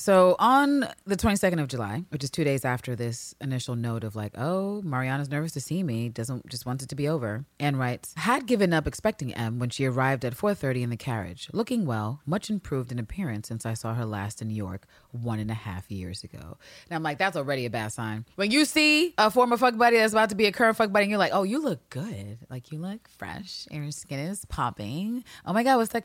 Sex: female